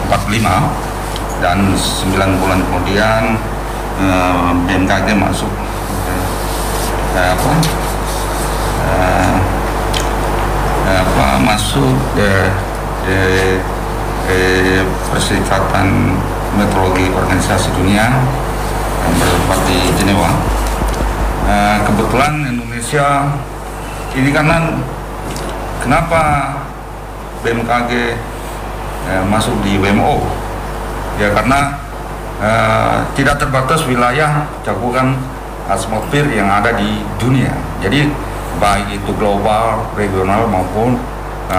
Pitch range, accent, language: 95-120 Hz, native, Indonesian